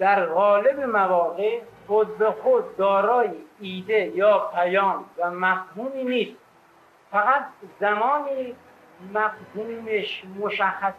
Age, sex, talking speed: 50-69, male, 95 wpm